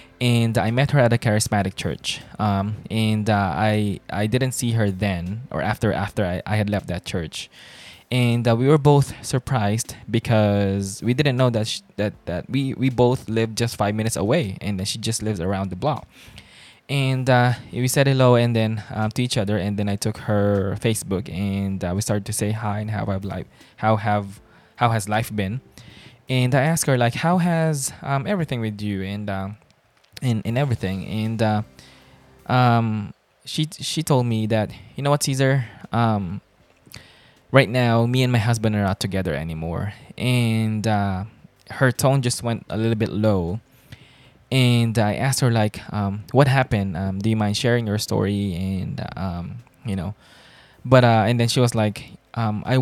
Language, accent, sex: English, Filipino, male